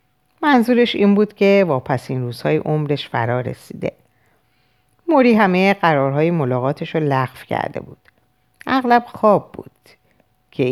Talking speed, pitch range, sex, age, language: 125 wpm, 130-220 Hz, female, 50-69, Persian